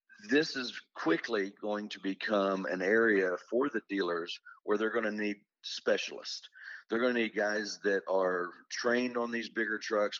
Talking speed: 170 wpm